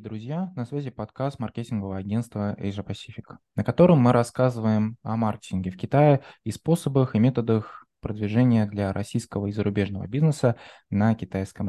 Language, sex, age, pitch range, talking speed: Russian, male, 20-39, 105-125 Hz, 145 wpm